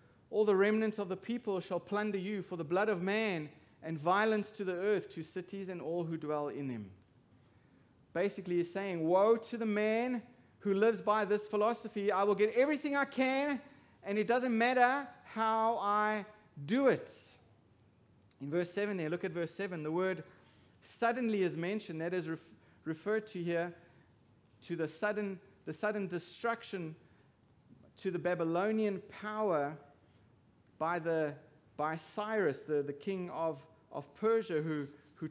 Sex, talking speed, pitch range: male, 160 wpm, 150-205 Hz